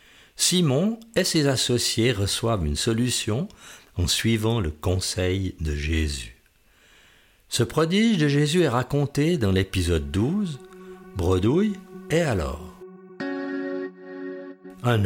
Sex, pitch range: male, 95-150 Hz